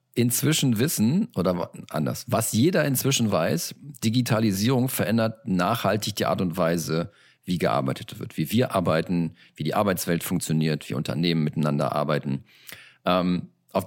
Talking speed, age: 130 wpm, 40-59